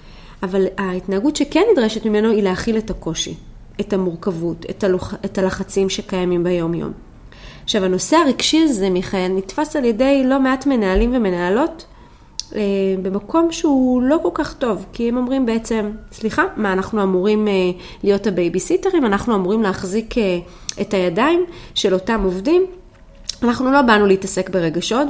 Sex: female